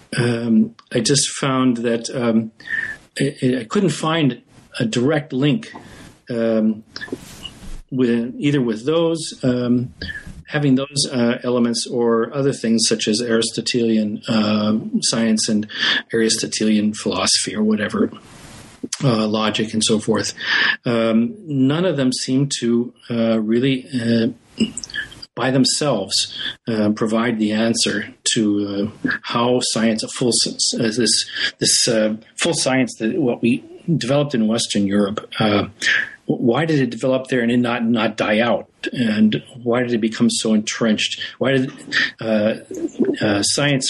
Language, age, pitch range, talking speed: English, 40-59, 110-130 Hz, 135 wpm